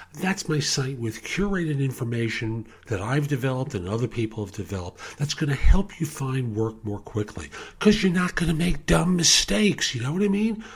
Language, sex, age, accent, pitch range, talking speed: English, male, 50-69, American, 110-160 Hz, 200 wpm